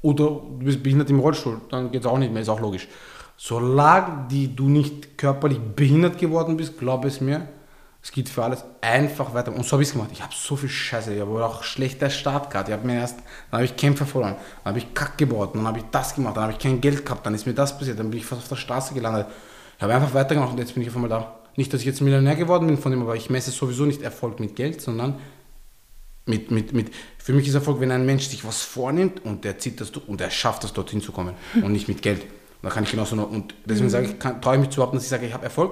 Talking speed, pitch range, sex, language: 280 wpm, 115-145 Hz, male, German